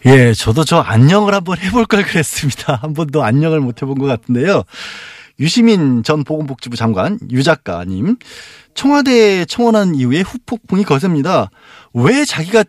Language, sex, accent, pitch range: Korean, male, native, 130-195 Hz